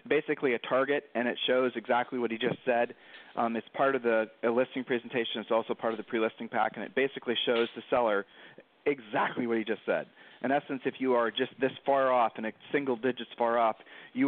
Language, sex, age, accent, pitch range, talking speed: English, male, 40-59, American, 115-135 Hz, 225 wpm